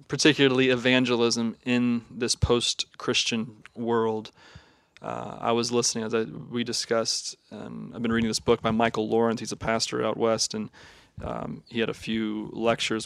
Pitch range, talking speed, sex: 115-135 Hz, 160 wpm, male